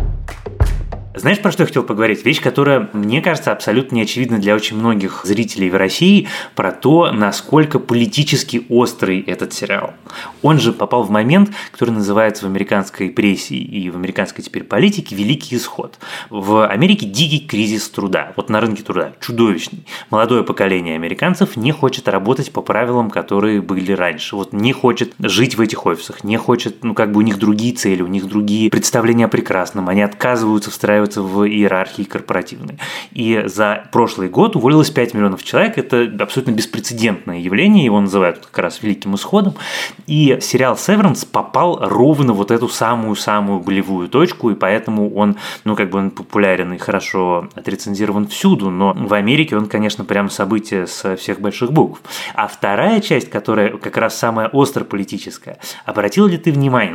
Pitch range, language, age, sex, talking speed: 100-125 Hz, Russian, 20-39, male, 165 wpm